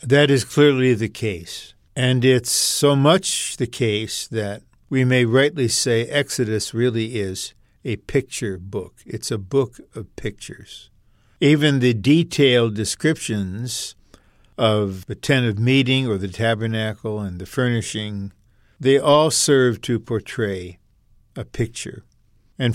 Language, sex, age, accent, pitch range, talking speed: English, male, 60-79, American, 110-140 Hz, 130 wpm